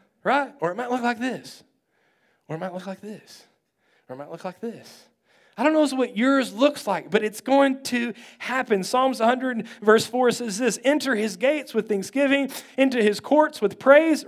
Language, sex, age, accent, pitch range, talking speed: English, male, 30-49, American, 195-260 Hz, 200 wpm